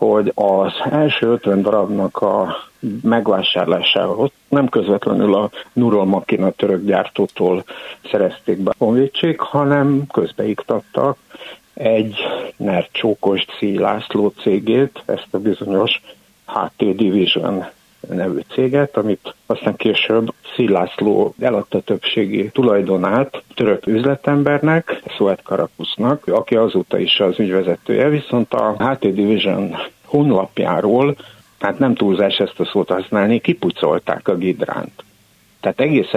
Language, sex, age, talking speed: Hungarian, male, 60-79, 105 wpm